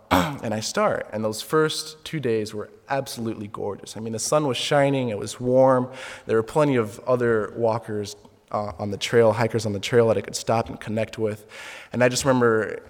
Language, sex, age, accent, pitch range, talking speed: English, male, 20-39, American, 105-125 Hz, 210 wpm